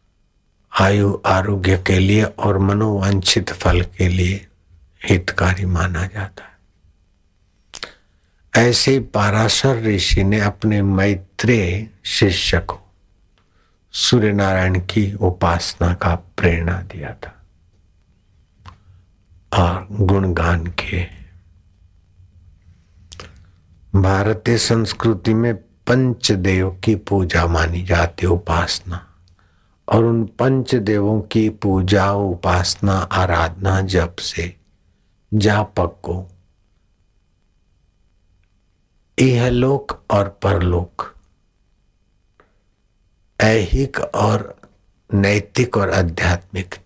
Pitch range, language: 90-100 Hz, Hindi